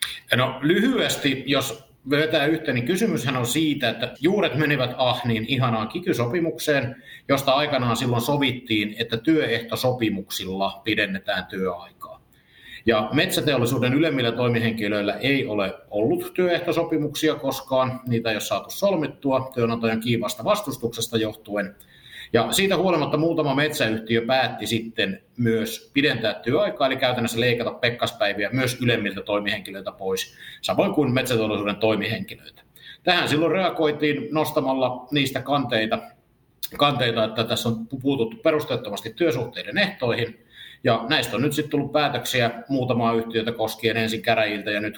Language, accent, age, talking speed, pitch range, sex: Finnish, native, 50-69, 120 wpm, 115-145 Hz, male